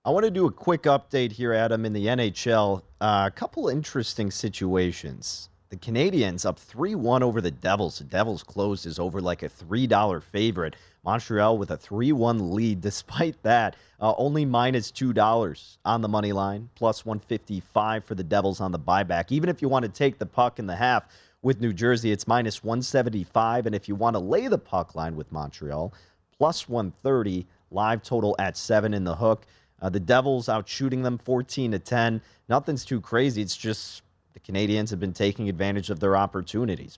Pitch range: 100-125 Hz